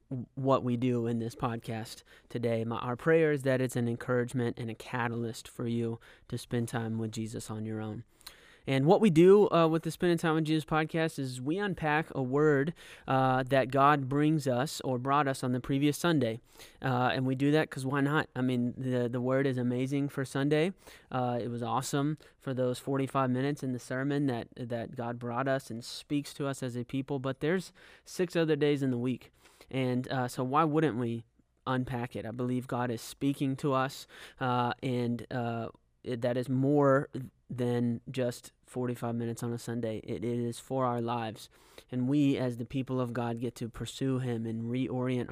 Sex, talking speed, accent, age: male, 200 wpm, American, 20-39